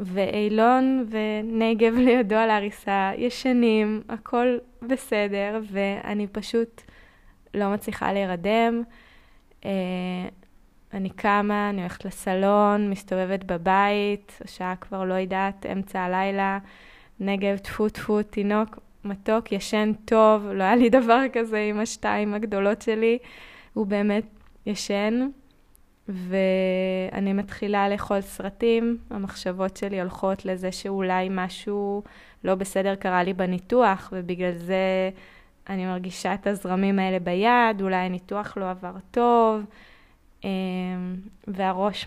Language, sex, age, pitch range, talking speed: Hebrew, female, 20-39, 190-215 Hz, 105 wpm